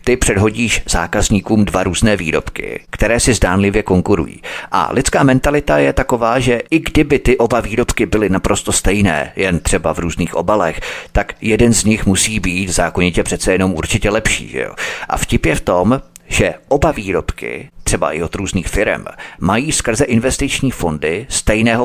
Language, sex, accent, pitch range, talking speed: Czech, male, native, 95-120 Hz, 170 wpm